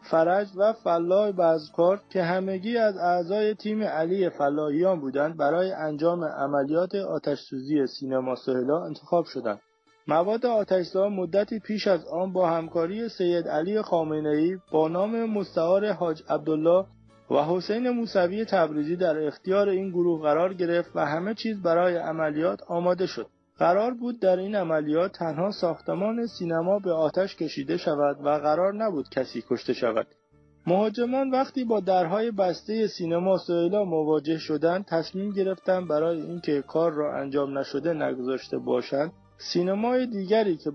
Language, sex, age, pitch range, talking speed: Persian, male, 30-49, 155-195 Hz, 135 wpm